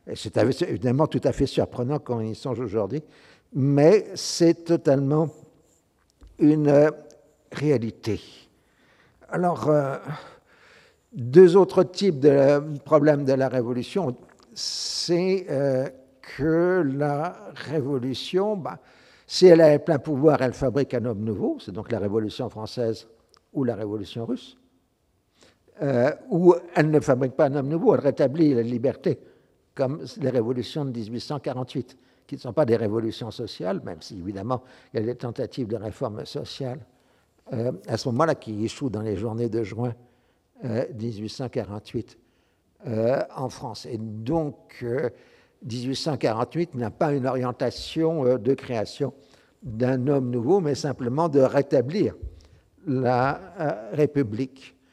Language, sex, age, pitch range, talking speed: French, male, 60-79, 120-150 Hz, 130 wpm